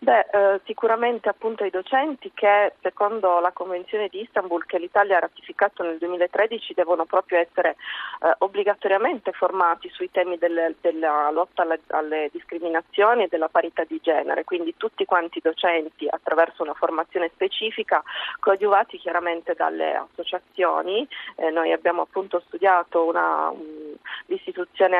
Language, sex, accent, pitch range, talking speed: Italian, female, native, 165-200 Hz, 135 wpm